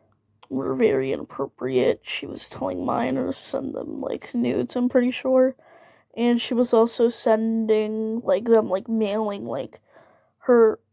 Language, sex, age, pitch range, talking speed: English, female, 10-29, 190-250 Hz, 135 wpm